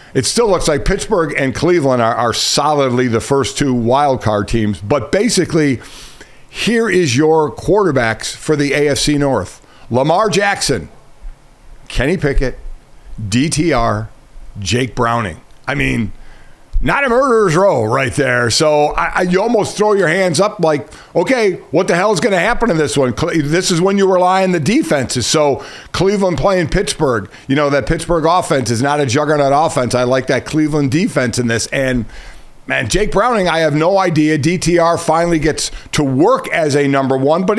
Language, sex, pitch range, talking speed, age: English, male, 130-185 Hz, 175 wpm, 50-69